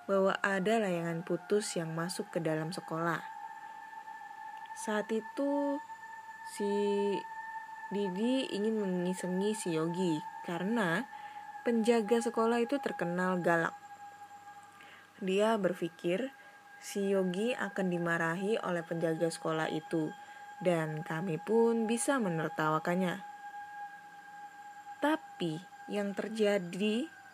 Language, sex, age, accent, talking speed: Indonesian, female, 10-29, native, 90 wpm